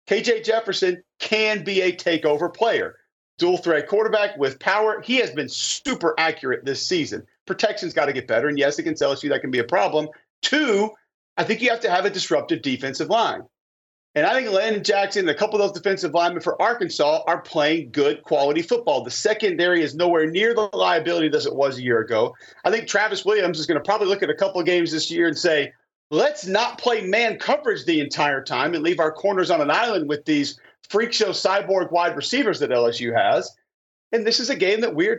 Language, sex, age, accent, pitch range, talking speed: English, male, 40-59, American, 165-225 Hz, 220 wpm